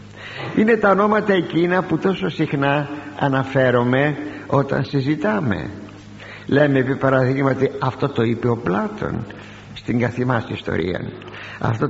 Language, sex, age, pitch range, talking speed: Greek, male, 60-79, 115-155 Hz, 110 wpm